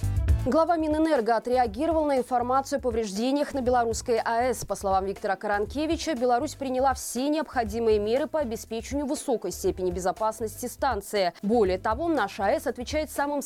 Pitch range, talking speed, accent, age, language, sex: 195-270 Hz, 140 wpm, native, 20-39, Russian, female